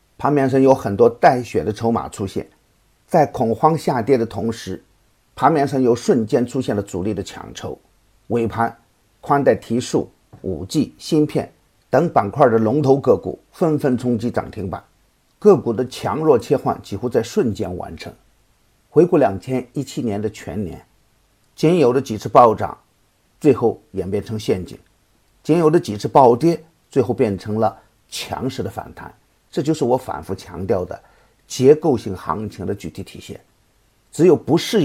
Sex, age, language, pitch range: male, 50-69, Chinese, 100-135 Hz